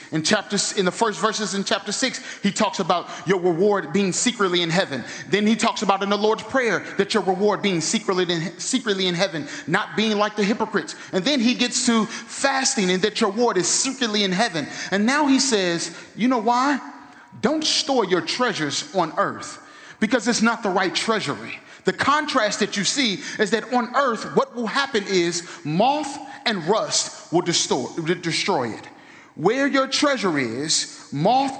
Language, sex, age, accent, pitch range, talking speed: English, male, 30-49, American, 190-250 Hz, 190 wpm